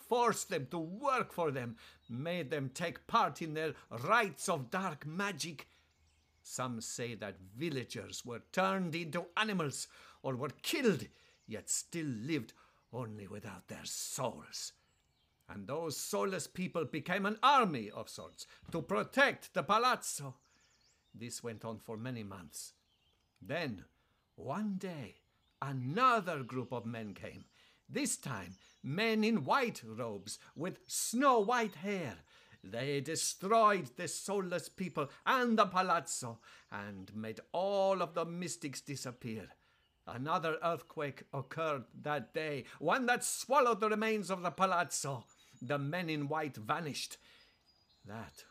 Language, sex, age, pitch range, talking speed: English, male, 60-79, 115-180 Hz, 130 wpm